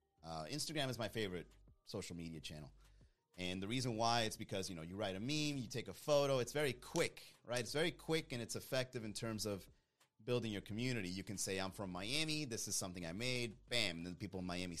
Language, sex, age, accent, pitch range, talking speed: English, male, 30-49, American, 105-150 Hz, 225 wpm